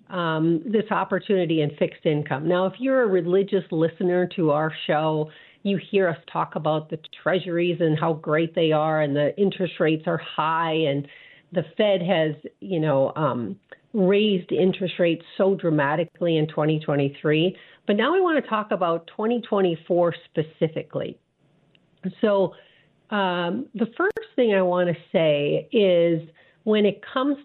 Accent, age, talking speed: American, 50-69, 150 wpm